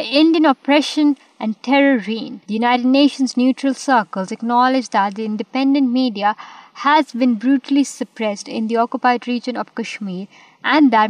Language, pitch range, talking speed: Urdu, 210-260 Hz, 145 wpm